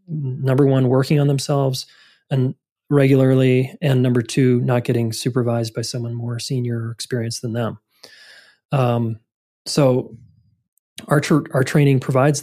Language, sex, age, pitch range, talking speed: English, male, 30-49, 125-145 Hz, 135 wpm